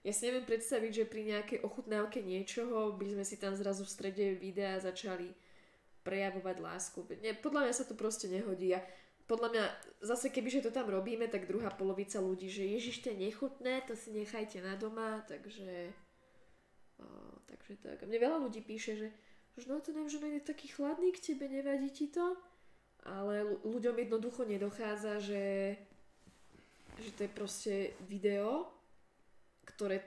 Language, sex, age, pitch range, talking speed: Slovak, female, 20-39, 195-250 Hz, 160 wpm